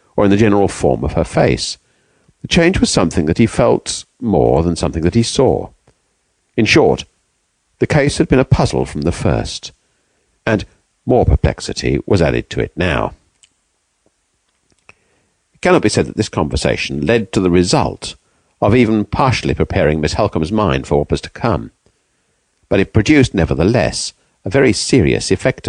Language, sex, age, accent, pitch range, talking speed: English, male, 50-69, British, 75-115 Hz, 165 wpm